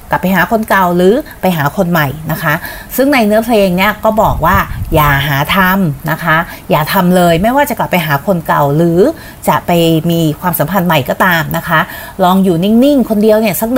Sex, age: female, 30-49